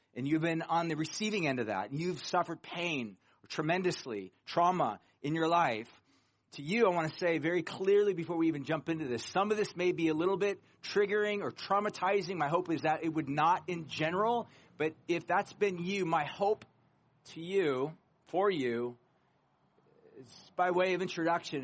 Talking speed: 190 wpm